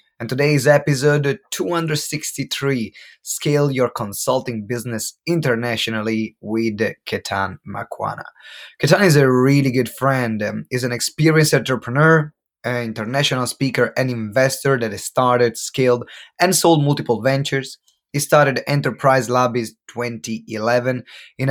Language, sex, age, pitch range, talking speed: English, male, 20-39, 110-140 Hz, 120 wpm